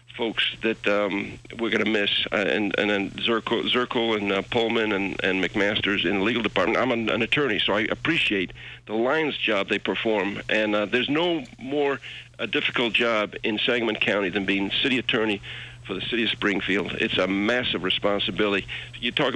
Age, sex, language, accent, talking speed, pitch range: 60-79, male, English, American, 190 wpm, 105-125 Hz